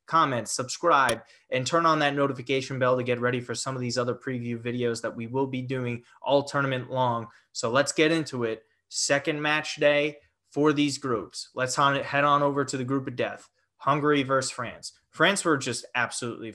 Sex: male